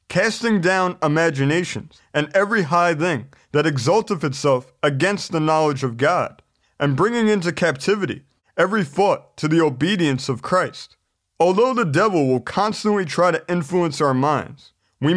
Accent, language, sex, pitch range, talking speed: American, English, male, 145-195 Hz, 145 wpm